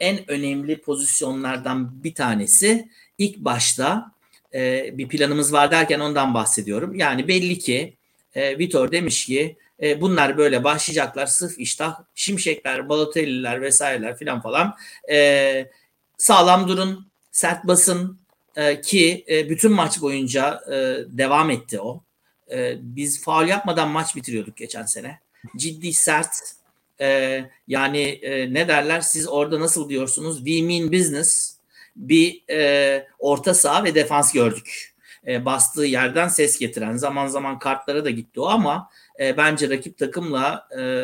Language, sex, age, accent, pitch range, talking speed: Turkish, male, 60-79, native, 140-170 Hz, 135 wpm